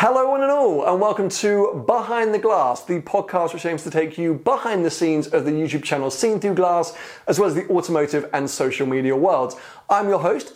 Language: English